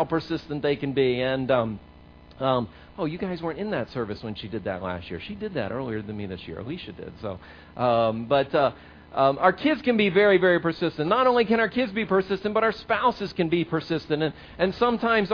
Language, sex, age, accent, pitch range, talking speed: English, male, 40-59, American, 130-195 Hz, 225 wpm